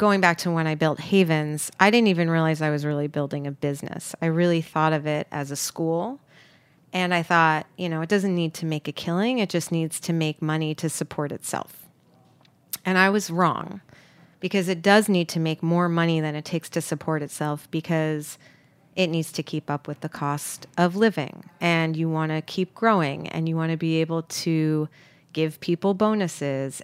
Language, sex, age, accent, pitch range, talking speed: English, female, 30-49, American, 155-175 Hz, 205 wpm